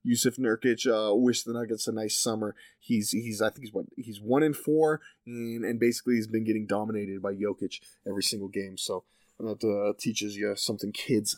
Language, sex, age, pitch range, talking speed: English, male, 20-39, 110-125 Hz, 200 wpm